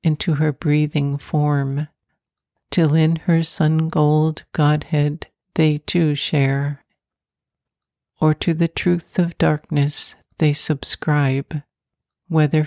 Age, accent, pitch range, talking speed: 60-79, American, 145-160 Hz, 105 wpm